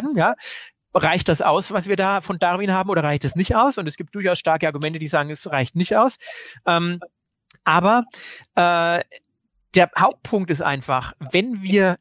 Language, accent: German, German